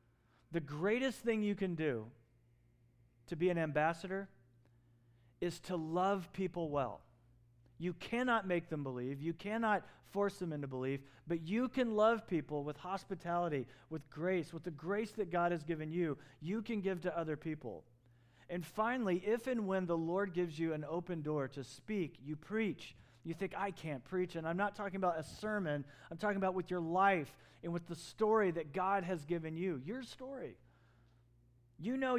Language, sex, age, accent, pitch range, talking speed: English, male, 40-59, American, 140-185 Hz, 180 wpm